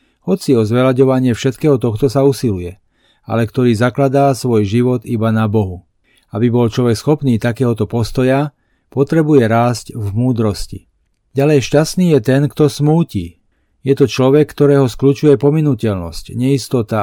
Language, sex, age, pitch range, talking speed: Slovak, male, 40-59, 115-140 Hz, 135 wpm